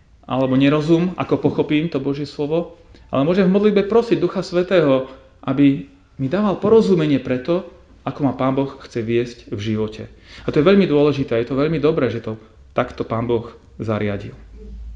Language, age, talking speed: Slovak, 30-49, 175 wpm